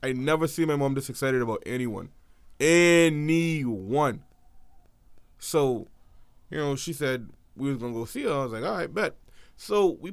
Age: 20-39